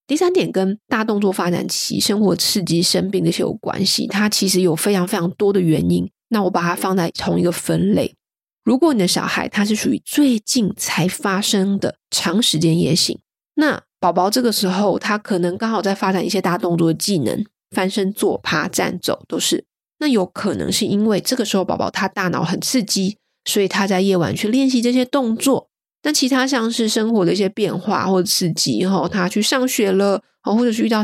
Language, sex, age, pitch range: Chinese, female, 20-39, 180-230 Hz